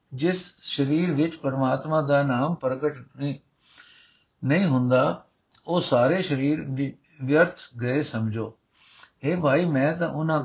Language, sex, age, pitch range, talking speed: Punjabi, male, 60-79, 135-160 Hz, 120 wpm